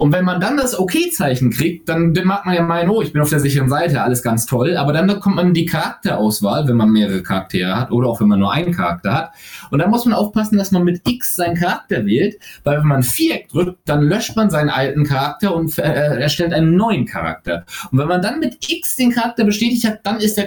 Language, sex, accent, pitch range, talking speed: German, male, German, 125-185 Hz, 240 wpm